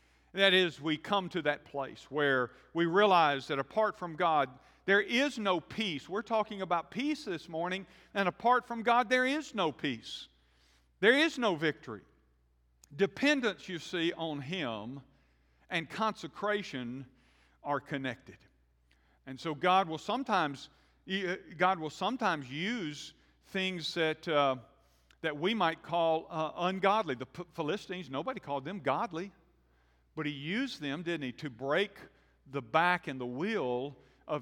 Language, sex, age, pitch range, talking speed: English, male, 50-69, 130-190 Hz, 145 wpm